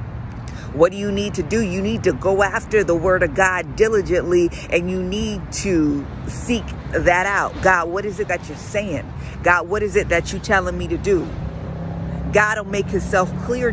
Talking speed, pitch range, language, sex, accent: 195 wpm, 170-210 Hz, English, female, American